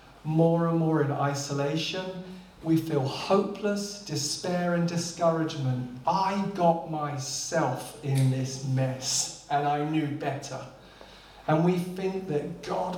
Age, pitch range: 40-59, 145-180 Hz